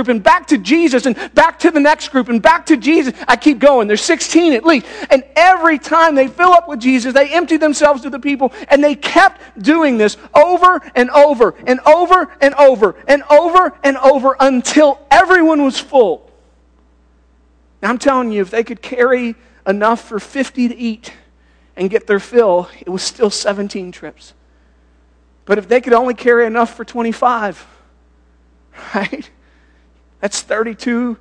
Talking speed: 175 wpm